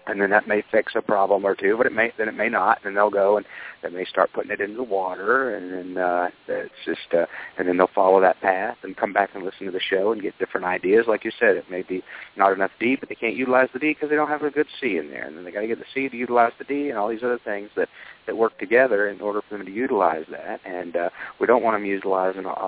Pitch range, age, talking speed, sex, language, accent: 90-115 Hz, 40-59, 290 wpm, male, English, American